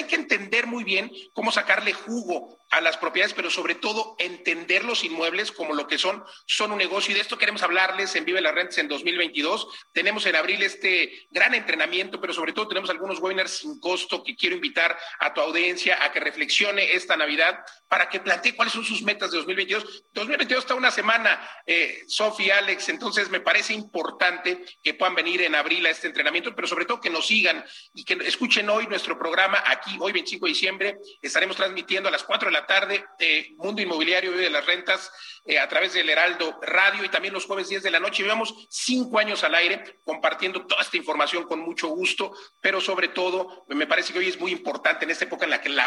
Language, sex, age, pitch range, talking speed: Spanish, male, 40-59, 180-220 Hz, 215 wpm